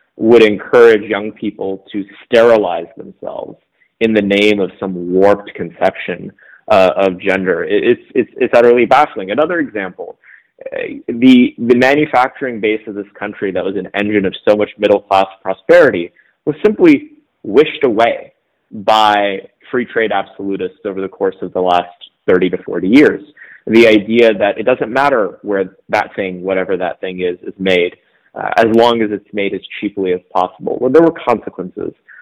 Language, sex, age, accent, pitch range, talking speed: English, male, 30-49, American, 95-125 Hz, 165 wpm